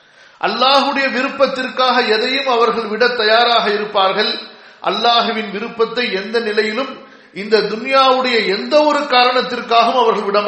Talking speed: 130 wpm